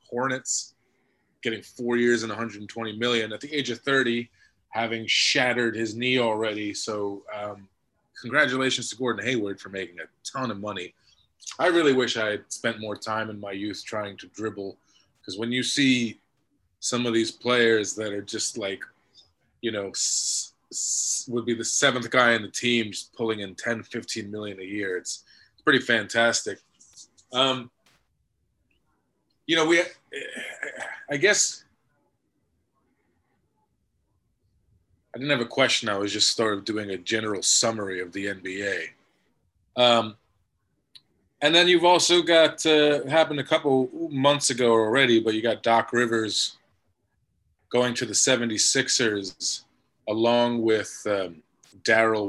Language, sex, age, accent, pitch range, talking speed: English, male, 20-39, American, 105-125 Hz, 145 wpm